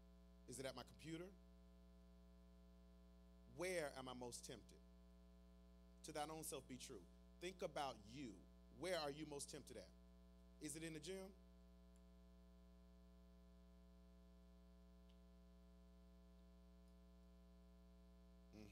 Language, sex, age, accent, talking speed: English, male, 40-59, American, 100 wpm